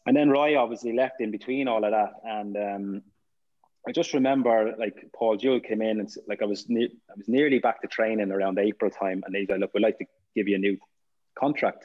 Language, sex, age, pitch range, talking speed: English, male, 20-39, 100-110 Hz, 240 wpm